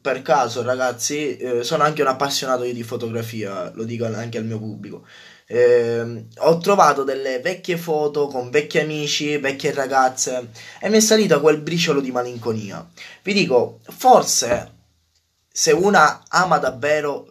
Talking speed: 150 wpm